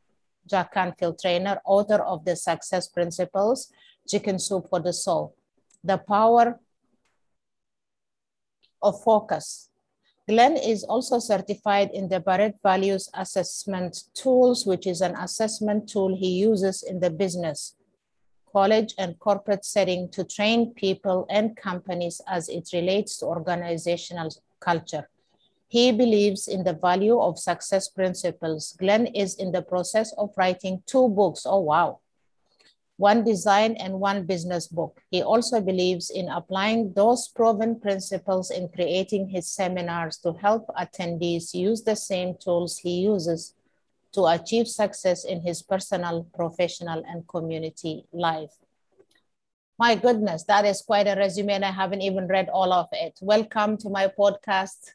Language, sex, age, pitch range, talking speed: English, female, 50-69, 180-210 Hz, 140 wpm